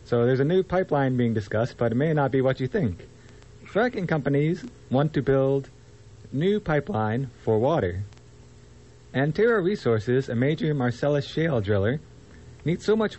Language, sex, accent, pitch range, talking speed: English, male, American, 110-150 Hz, 155 wpm